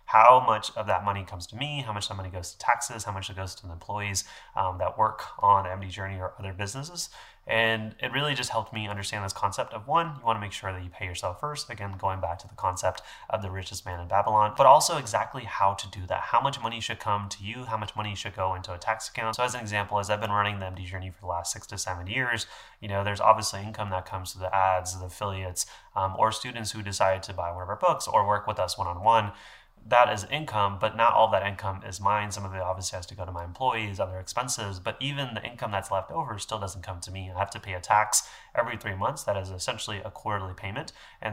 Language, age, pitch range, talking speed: English, 20-39, 95-110 Hz, 265 wpm